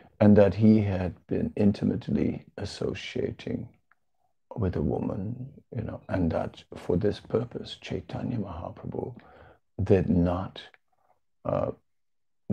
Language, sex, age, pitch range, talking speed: English, male, 60-79, 100-115 Hz, 105 wpm